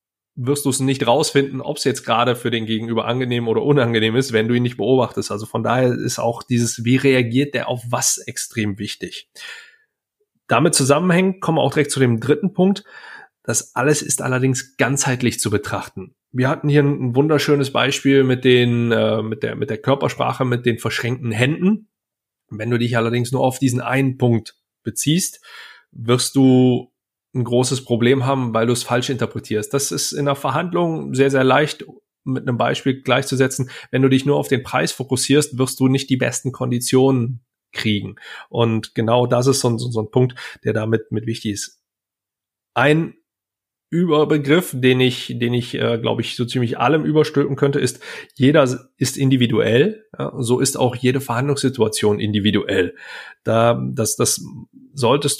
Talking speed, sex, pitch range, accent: 170 wpm, male, 115-140 Hz, German